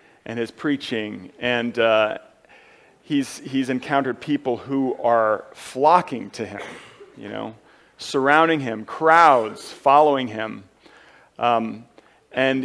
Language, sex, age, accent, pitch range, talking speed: English, male, 40-59, American, 125-160 Hz, 110 wpm